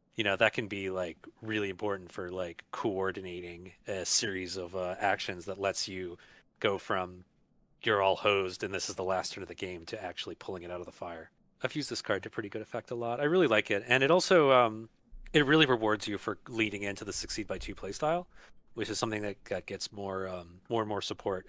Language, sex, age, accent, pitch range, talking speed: English, male, 30-49, American, 95-115 Hz, 230 wpm